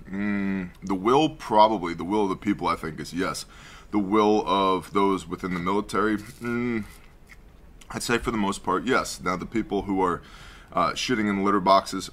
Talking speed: 195 wpm